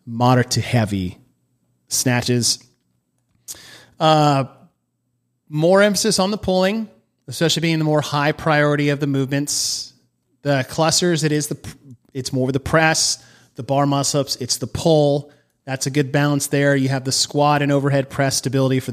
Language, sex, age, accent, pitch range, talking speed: English, male, 30-49, American, 120-145 Hz, 150 wpm